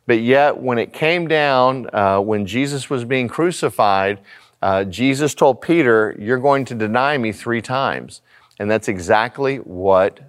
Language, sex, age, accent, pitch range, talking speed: English, male, 40-59, American, 110-150 Hz, 155 wpm